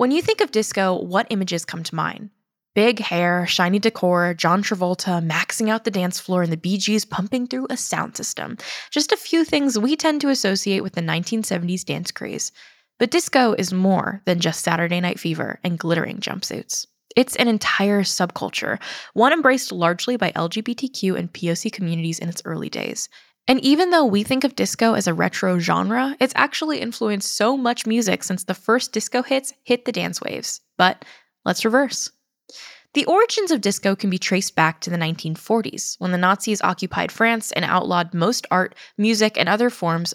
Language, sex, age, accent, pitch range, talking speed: English, female, 10-29, American, 175-245 Hz, 185 wpm